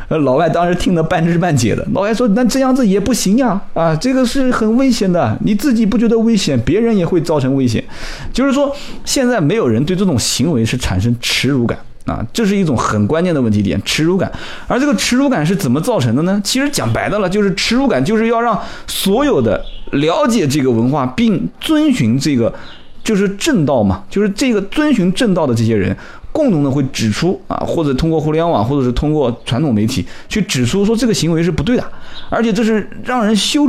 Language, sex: Chinese, male